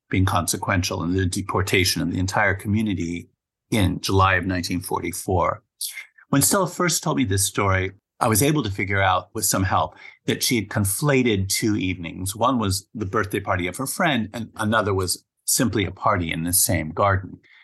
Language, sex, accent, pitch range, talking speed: English, male, American, 95-115 Hz, 180 wpm